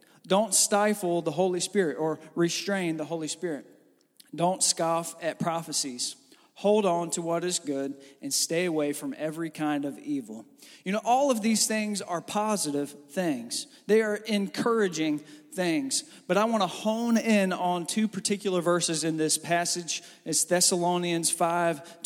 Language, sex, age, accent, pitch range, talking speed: English, male, 40-59, American, 165-205 Hz, 155 wpm